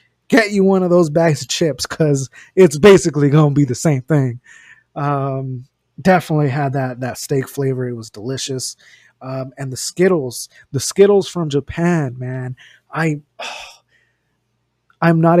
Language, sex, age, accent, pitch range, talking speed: English, male, 20-39, American, 130-160 Hz, 155 wpm